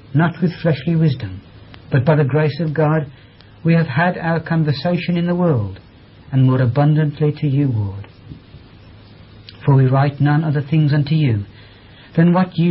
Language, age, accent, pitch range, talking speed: English, 60-79, British, 110-160 Hz, 165 wpm